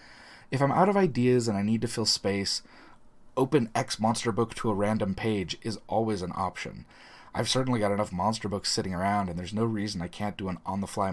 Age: 30-49